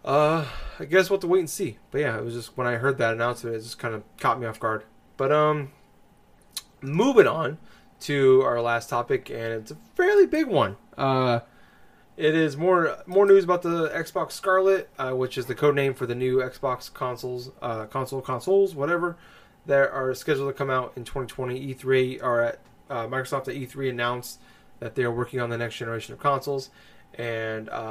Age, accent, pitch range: 20-39, American, 115-150 Hz